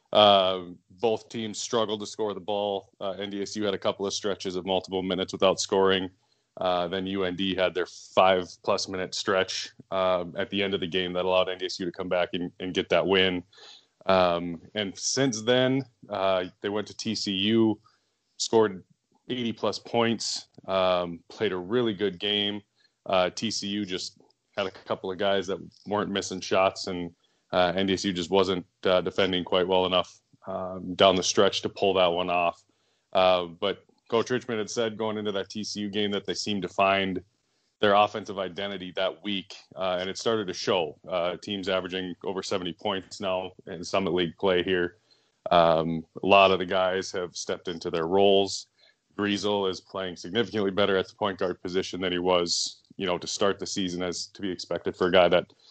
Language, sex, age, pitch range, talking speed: English, male, 20-39, 90-105 Hz, 185 wpm